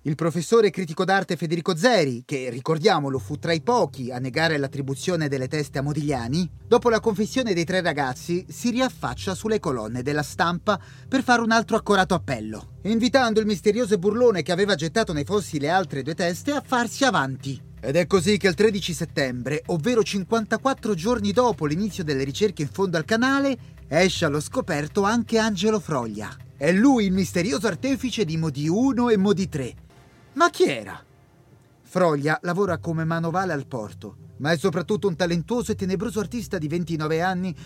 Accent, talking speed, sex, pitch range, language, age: native, 170 wpm, male, 145-210 Hz, Italian, 30-49